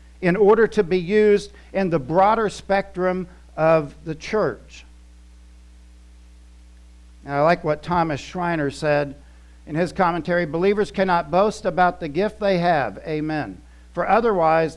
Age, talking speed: 50-69, 135 wpm